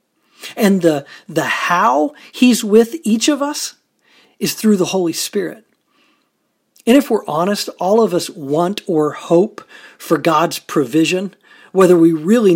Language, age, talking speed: English, 40-59, 145 wpm